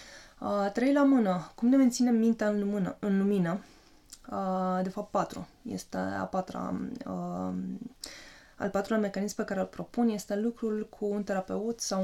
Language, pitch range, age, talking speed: Romanian, 190-225 Hz, 20-39, 165 wpm